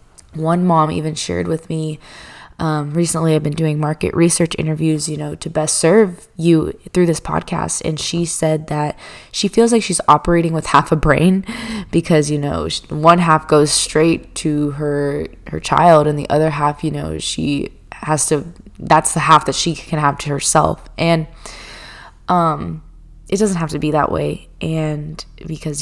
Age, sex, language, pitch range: 20-39, female, English, 150-175 Hz